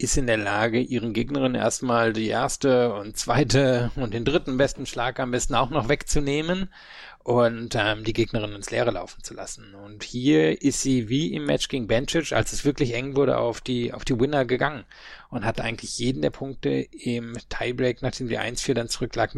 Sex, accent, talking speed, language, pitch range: male, German, 195 wpm, German, 115-130 Hz